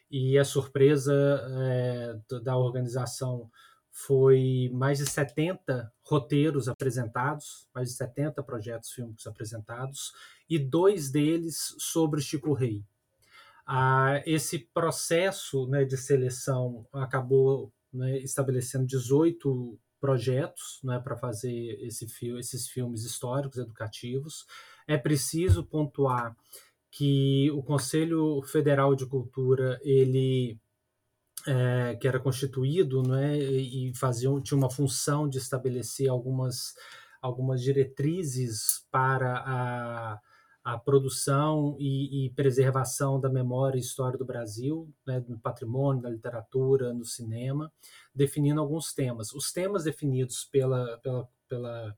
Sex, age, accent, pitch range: male, 20-39, Brazilian, 125-140 Hz